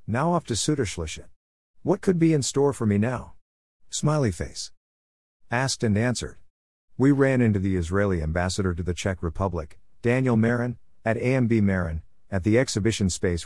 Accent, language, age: American, English, 50-69